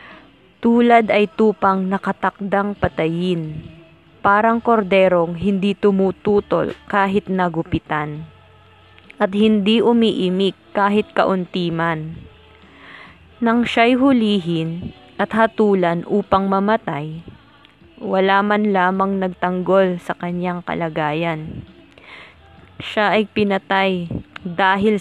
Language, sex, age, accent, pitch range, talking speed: English, female, 20-39, Filipino, 175-215 Hz, 85 wpm